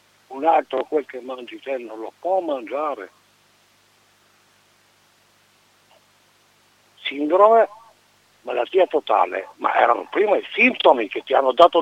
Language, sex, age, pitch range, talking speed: Italian, male, 60-79, 130-220 Hz, 110 wpm